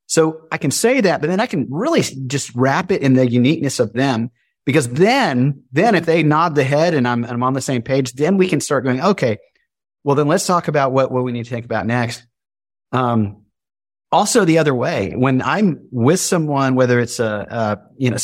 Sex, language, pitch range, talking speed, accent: male, English, 125-165 Hz, 220 wpm, American